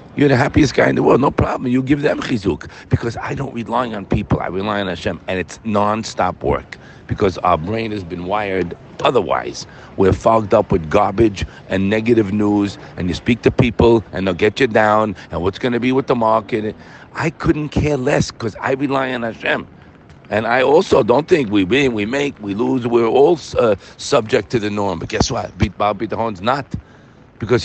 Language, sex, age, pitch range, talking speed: English, male, 50-69, 95-120 Hz, 205 wpm